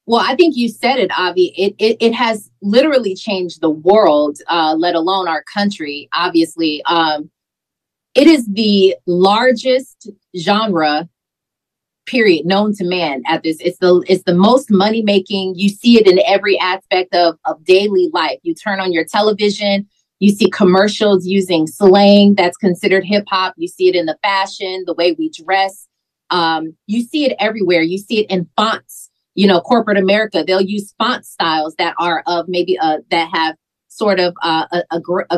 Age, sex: 30-49, female